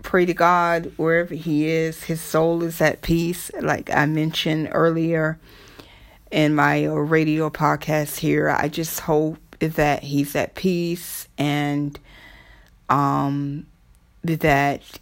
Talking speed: 120 wpm